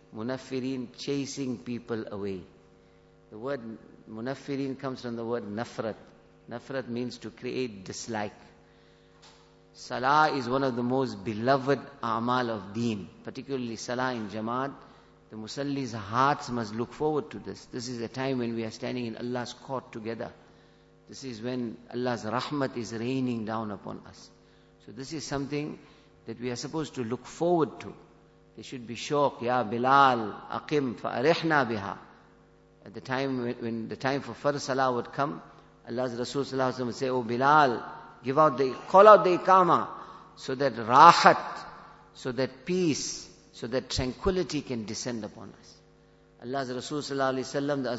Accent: Indian